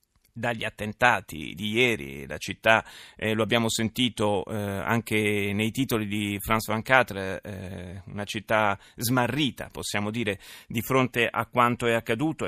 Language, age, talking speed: Italian, 30-49, 145 wpm